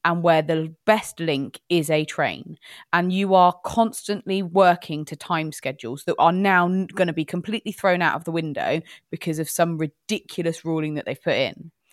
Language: English